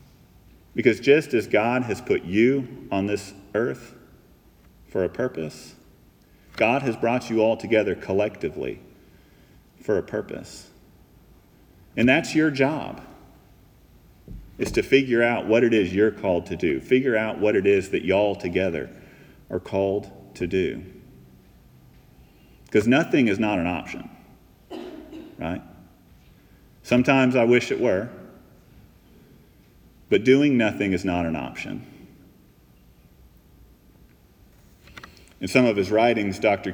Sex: male